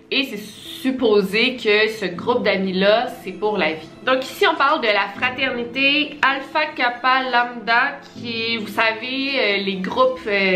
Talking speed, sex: 155 wpm, female